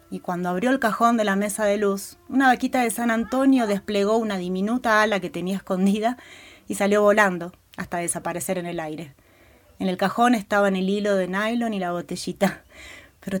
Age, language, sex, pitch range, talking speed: 30-49, Spanish, female, 175-225 Hz, 190 wpm